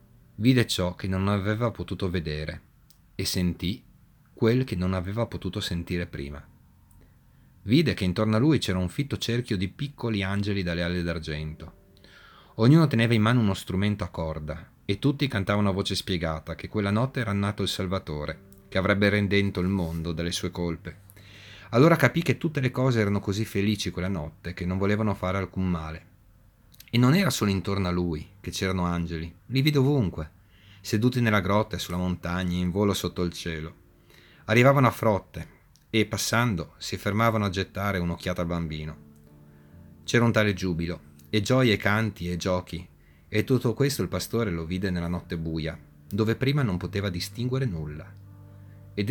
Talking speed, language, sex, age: 170 wpm, Italian, male, 30-49